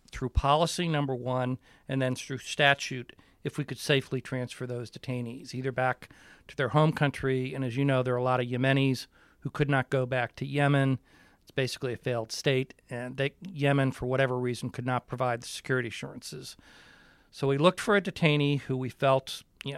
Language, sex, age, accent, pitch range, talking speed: English, male, 40-59, American, 125-145 Hz, 195 wpm